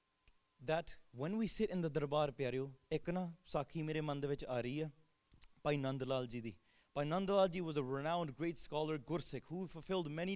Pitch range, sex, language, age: 145-185 Hz, male, English, 20-39